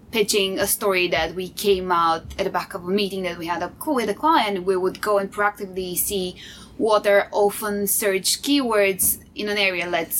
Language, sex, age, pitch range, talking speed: English, female, 10-29, 190-220 Hz, 205 wpm